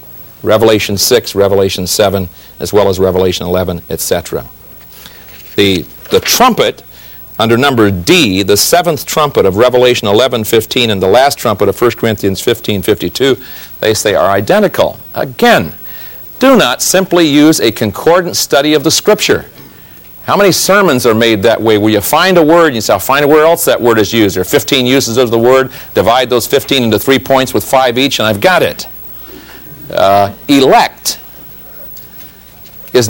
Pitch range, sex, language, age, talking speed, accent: 100-145 Hz, male, English, 50-69, 170 wpm, American